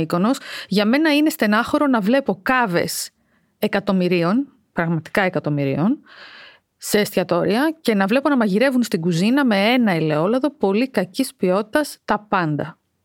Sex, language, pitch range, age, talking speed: female, Greek, 185-275 Hz, 30-49, 125 wpm